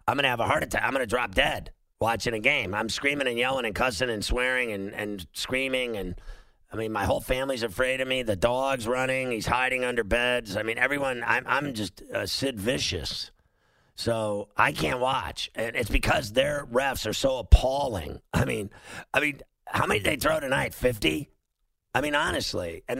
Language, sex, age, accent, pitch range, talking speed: English, male, 50-69, American, 105-130 Hz, 200 wpm